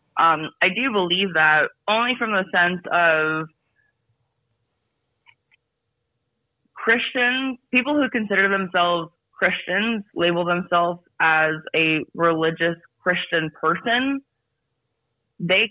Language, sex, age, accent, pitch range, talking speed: English, female, 20-39, American, 155-185 Hz, 90 wpm